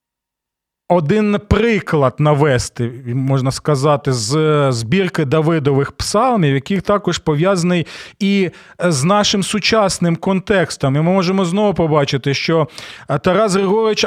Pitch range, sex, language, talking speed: 140-190 Hz, male, Ukrainian, 105 wpm